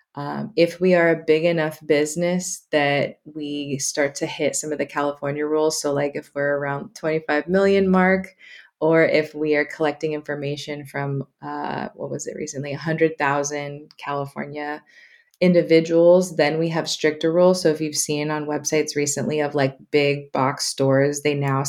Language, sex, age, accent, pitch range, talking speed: English, female, 20-39, American, 145-160 Hz, 165 wpm